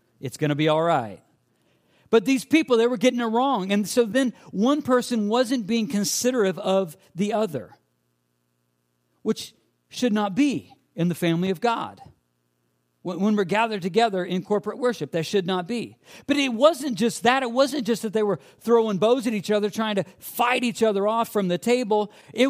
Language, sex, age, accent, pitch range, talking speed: English, male, 50-69, American, 165-230 Hz, 190 wpm